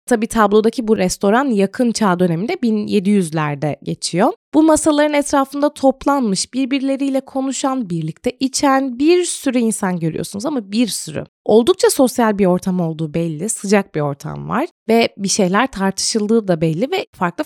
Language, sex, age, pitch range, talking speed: Turkish, female, 20-39, 195-275 Hz, 145 wpm